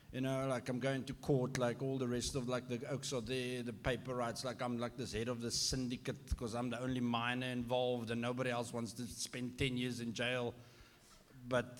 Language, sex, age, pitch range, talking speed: English, male, 60-79, 100-120 Hz, 230 wpm